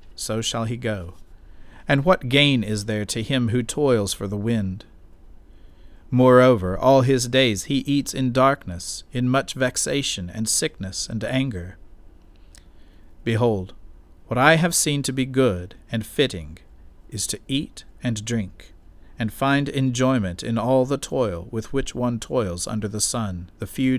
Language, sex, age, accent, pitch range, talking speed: English, male, 50-69, American, 90-125 Hz, 155 wpm